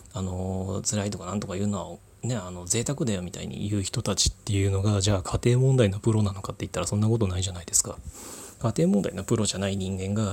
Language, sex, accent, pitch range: Japanese, male, native, 95-115 Hz